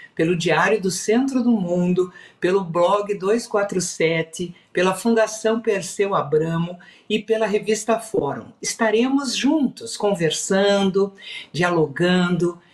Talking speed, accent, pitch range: 100 wpm, Brazilian, 165-235 Hz